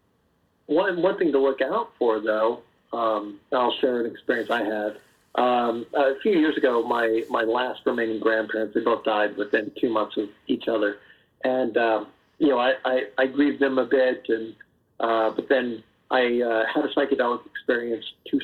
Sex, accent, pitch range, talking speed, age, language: male, American, 110-135 Hz, 180 wpm, 50-69, English